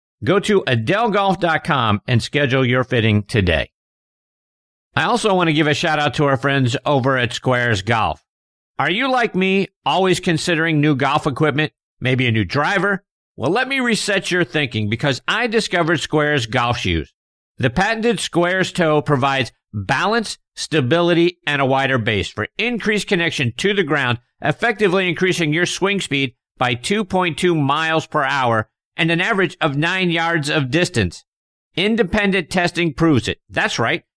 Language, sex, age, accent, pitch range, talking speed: English, male, 50-69, American, 130-185 Hz, 155 wpm